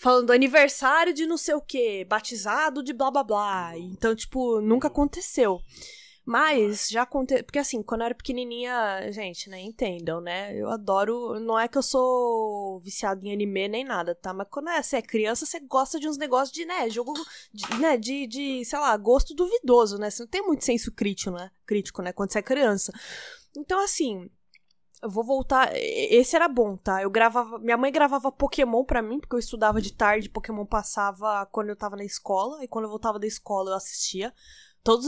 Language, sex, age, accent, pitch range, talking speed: Portuguese, female, 20-39, Brazilian, 205-265 Hz, 195 wpm